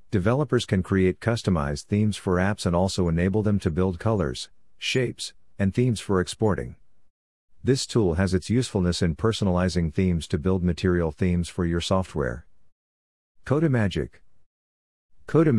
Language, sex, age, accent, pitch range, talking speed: English, male, 50-69, American, 85-100 Hz, 140 wpm